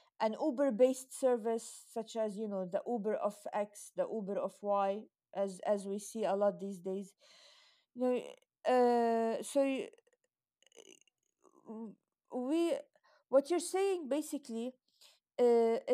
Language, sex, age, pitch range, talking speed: English, female, 50-69, 225-300 Hz, 125 wpm